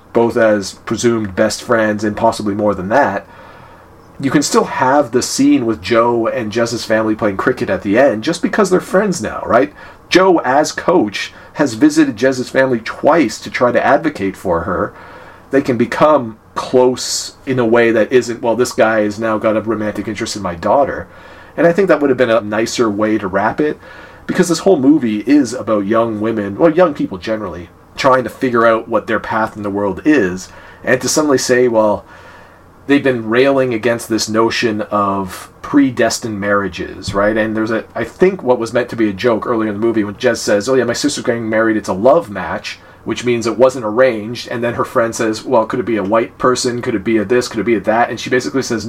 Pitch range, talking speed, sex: 110-130 Hz, 220 wpm, male